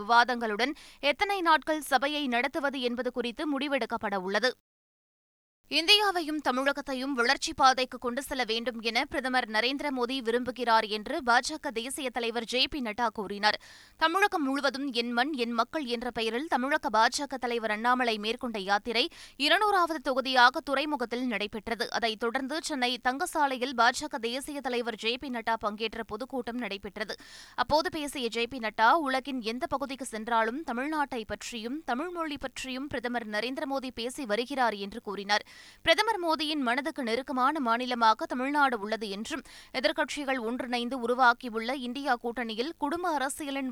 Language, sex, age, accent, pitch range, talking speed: Tamil, female, 20-39, native, 235-285 Hz, 125 wpm